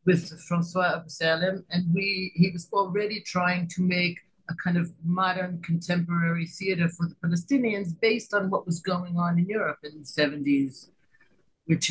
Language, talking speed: English, 155 wpm